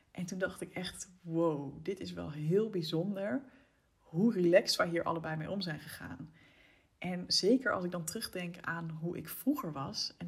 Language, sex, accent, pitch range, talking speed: Dutch, female, Dutch, 165-200 Hz, 185 wpm